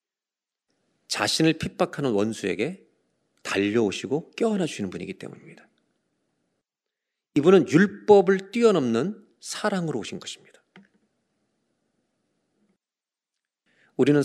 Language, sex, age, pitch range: Korean, male, 40-59, 110-170 Hz